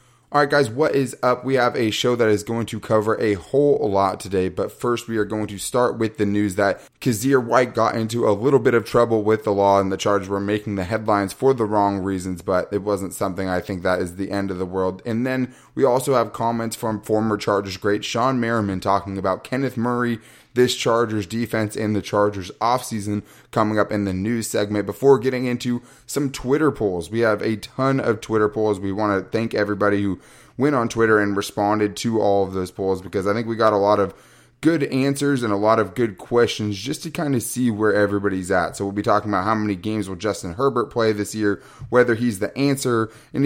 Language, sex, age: English, male, 20-39